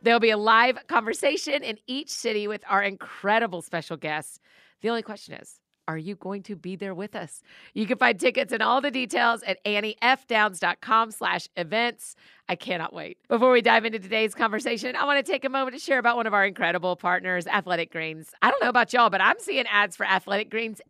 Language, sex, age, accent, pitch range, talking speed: English, female, 40-59, American, 190-245 Hz, 210 wpm